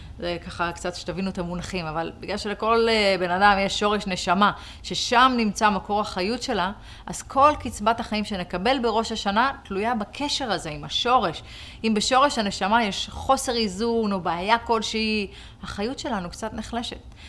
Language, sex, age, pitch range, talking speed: Hebrew, female, 30-49, 180-230 Hz, 155 wpm